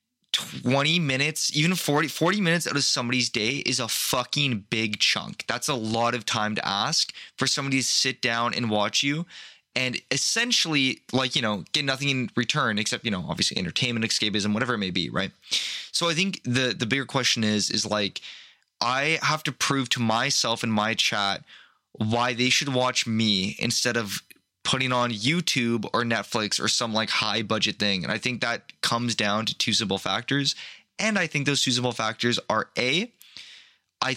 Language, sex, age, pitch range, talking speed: English, male, 20-39, 110-135 Hz, 190 wpm